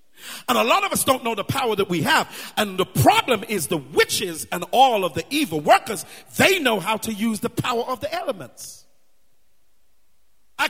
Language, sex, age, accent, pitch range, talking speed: English, male, 50-69, American, 195-265 Hz, 195 wpm